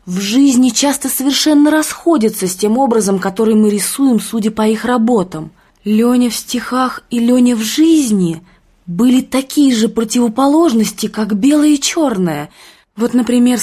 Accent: native